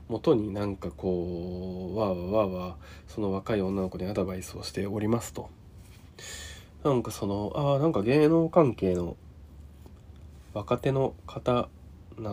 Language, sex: Japanese, male